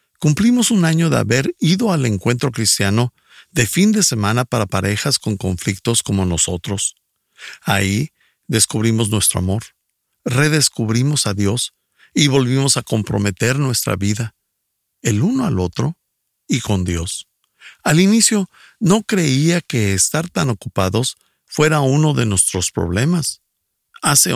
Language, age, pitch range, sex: Spanish, 50-69, 105-150 Hz, male